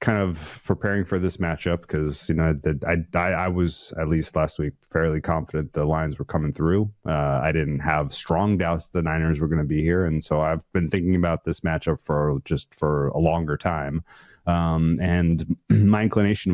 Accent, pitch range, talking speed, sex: American, 75-90 Hz, 200 wpm, male